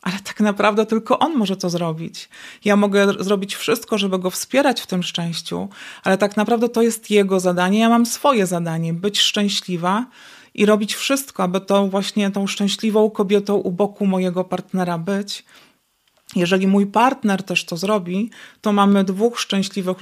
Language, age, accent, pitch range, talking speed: Polish, 30-49, native, 185-215 Hz, 165 wpm